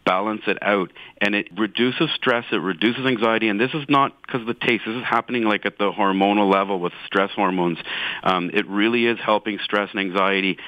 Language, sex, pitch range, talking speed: English, male, 95-120 Hz, 210 wpm